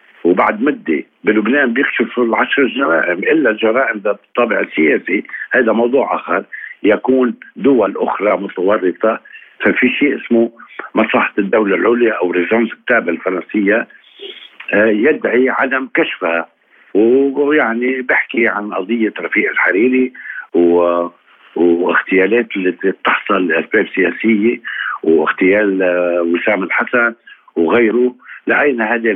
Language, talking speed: Arabic, 100 wpm